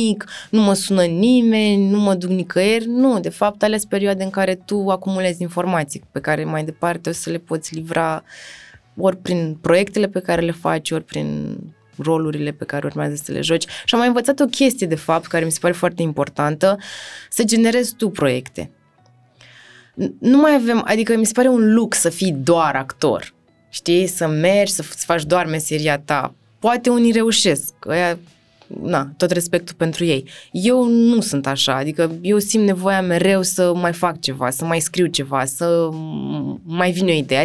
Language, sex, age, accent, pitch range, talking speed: Romanian, female, 20-39, native, 150-195 Hz, 185 wpm